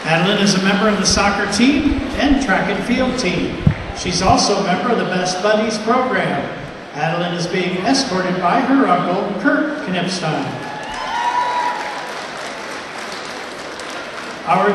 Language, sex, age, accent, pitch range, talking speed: English, male, 60-79, American, 185-245 Hz, 130 wpm